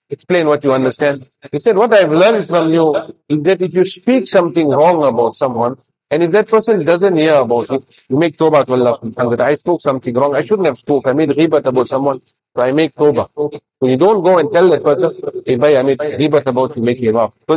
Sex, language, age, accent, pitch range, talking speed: male, English, 50-69, Indian, 145-185 Hz, 235 wpm